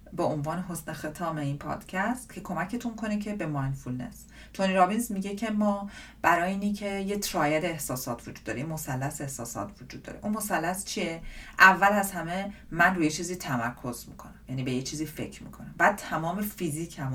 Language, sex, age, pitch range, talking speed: Persian, female, 40-59, 150-205 Hz, 170 wpm